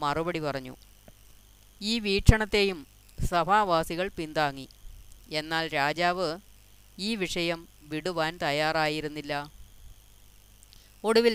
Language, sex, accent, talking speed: Malayalam, female, native, 70 wpm